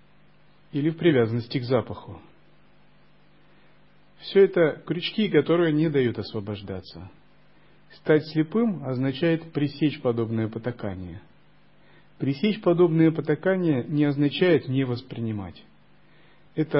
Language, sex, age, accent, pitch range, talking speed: Russian, male, 40-59, native, 120-160 Hz, 95 wpm